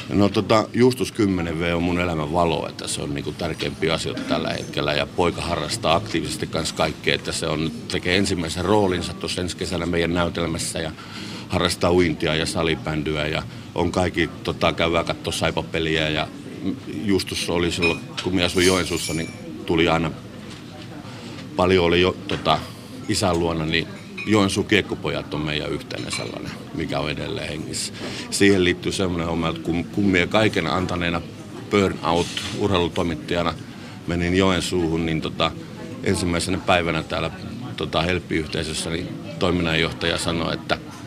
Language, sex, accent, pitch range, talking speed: Finnish, male, native, 85-100 Hz, 145 wpm